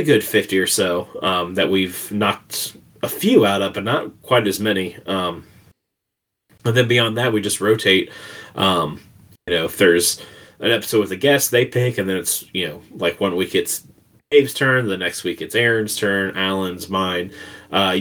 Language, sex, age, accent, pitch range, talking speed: English, male, 20-39, American, 95-110 Hz, 190 wpm